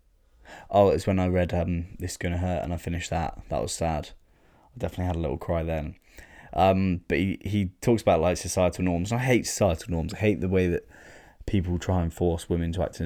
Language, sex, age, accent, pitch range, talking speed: English, male, 20-39, British, 80-90 Hz, 235 wpm